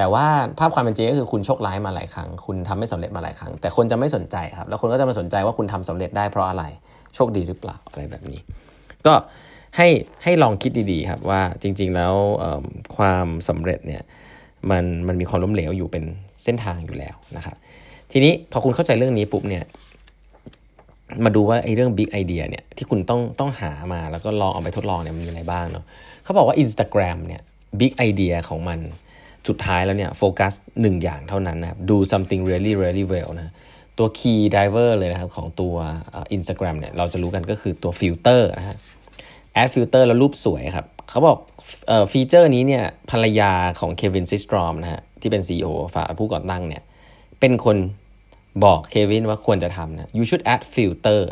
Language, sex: Thai, male